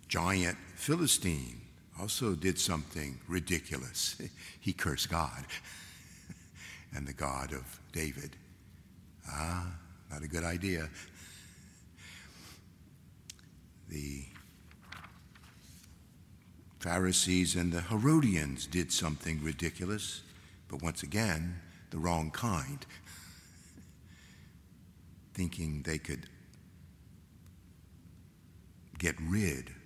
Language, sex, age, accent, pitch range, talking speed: English, male, 60-79, American, 80-95 Hz, 75 wpm